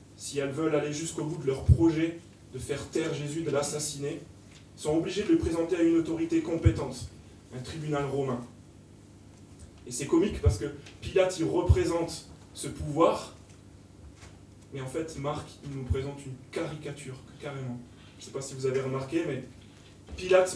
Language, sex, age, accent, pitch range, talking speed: French, male, 20-39, French, 115-155 Hz, 165 wpm